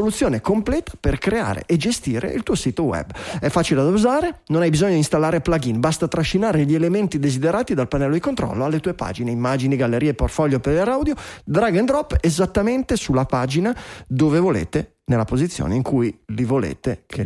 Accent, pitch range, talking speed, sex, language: native, 130-180 Hz, 175 wpm, male, Italian